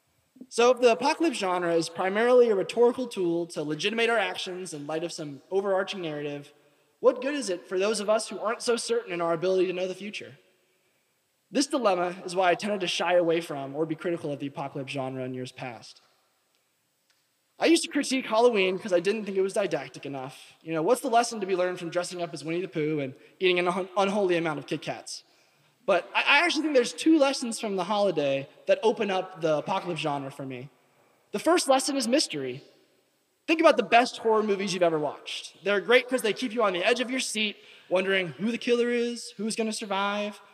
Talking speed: 220 wpm